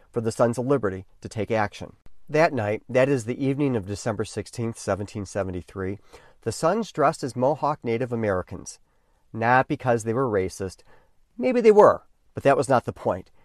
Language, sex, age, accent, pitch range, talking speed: English, male, 40-59, American, 105-145 Hz, 175 wpm